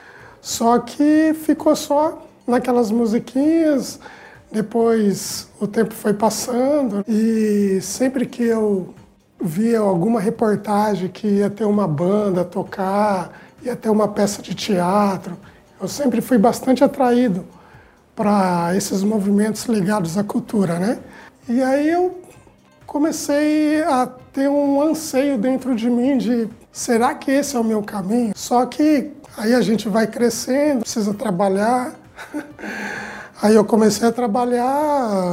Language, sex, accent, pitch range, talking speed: Portuguese, male, Brazilian, 200-260 Hz, 125 wpm